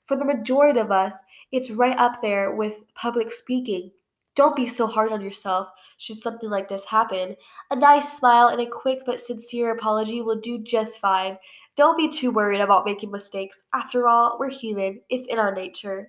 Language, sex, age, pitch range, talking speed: English, female, 10-29, 205-250 Hz, 190 wpm